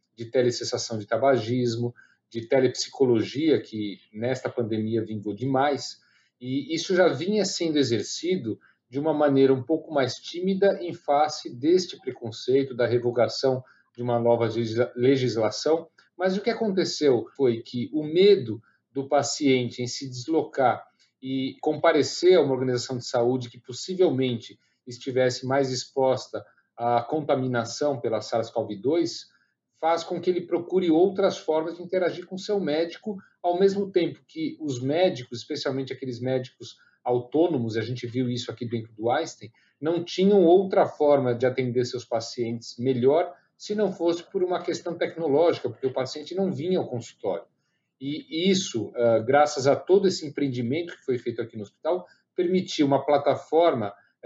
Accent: Brazilian